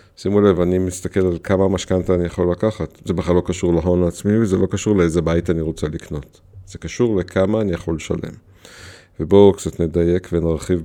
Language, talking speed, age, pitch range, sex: Hebrew, 190 wpm, 50-69, 85-100 Hz, male